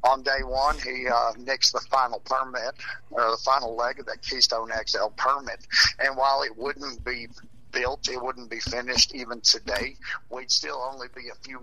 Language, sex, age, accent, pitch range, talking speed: English, male, 50-69, American, 120-135 Hz, 185 wpm